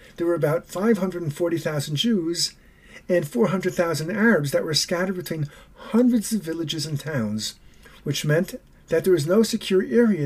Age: 50-69